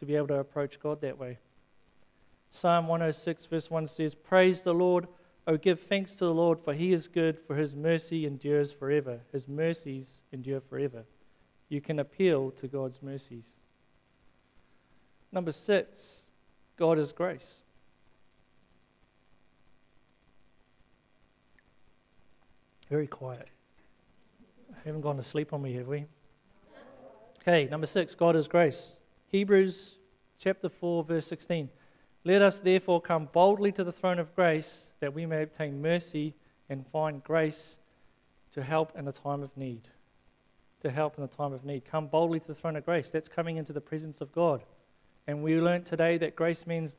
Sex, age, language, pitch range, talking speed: male, 40-59, English, 140-170 Hz, 155 wpm